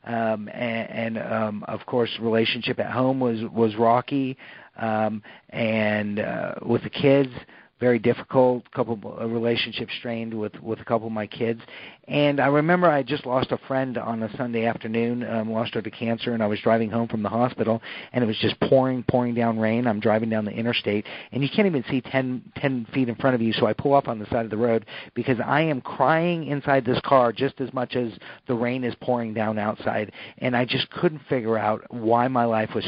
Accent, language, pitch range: American, English, 110-125 Hz